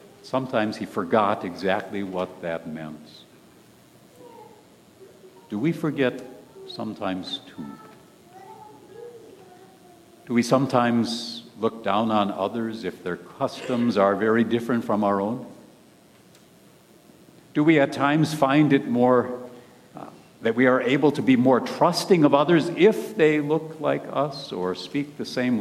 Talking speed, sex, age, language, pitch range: 130 wpm, male, 60-79, English, 105-140 Hz